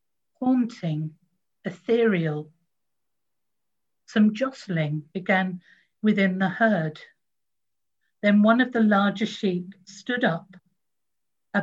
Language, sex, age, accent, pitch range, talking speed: English, female, 50-69, British, 175-225 Hz, 90 wpm